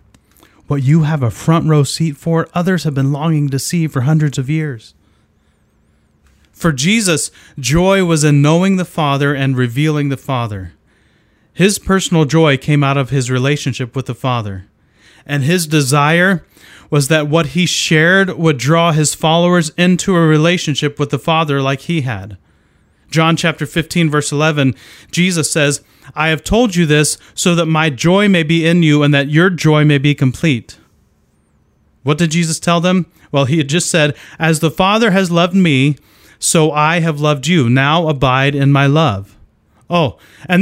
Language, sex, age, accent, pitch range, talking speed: English, male, 30-49, American, 135-170 Hz, 175 wpm